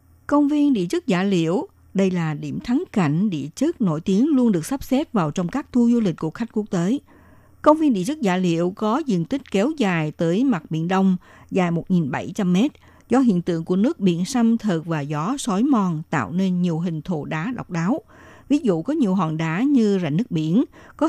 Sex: female